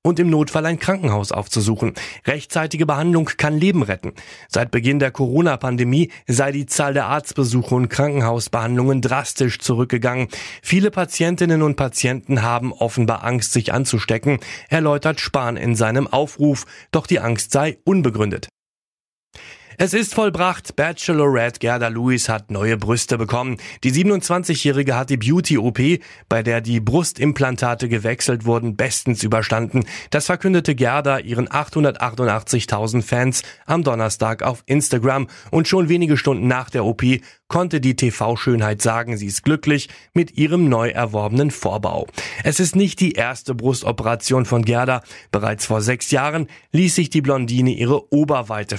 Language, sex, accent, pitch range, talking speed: German, male, German, 115-150 Hz, 140 wpm